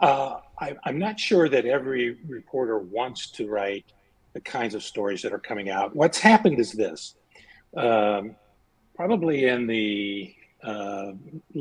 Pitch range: 110-145 Hz